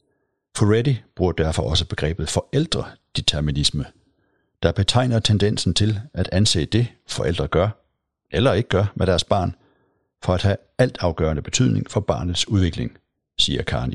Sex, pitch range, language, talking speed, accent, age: male, 85-110 Hz, Danish, 135 wpm, native, 60-79